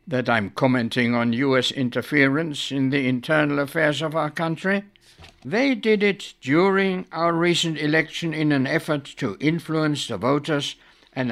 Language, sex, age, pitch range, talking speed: English, male, 60-79, 135-185 Hz, 150 wpm